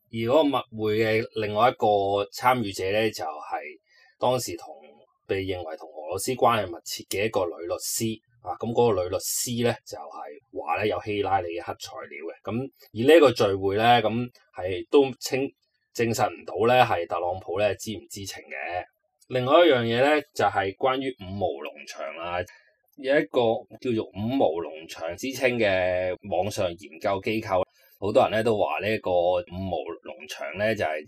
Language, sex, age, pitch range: Chinese, male, 20-39, 95-120 Hz